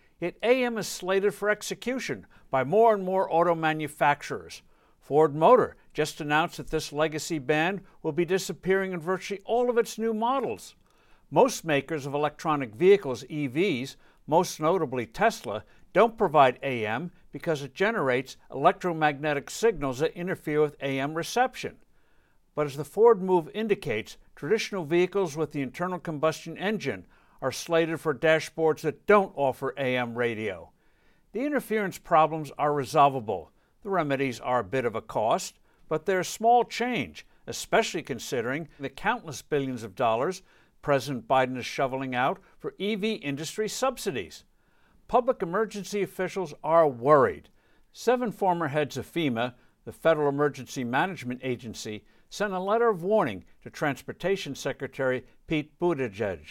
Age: 60-79